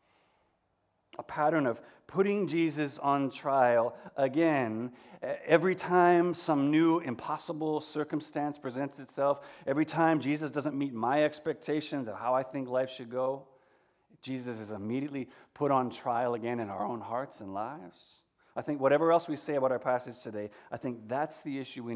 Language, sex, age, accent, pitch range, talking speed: English, male, 40-59, American, 120-145 Hz, 160 wpm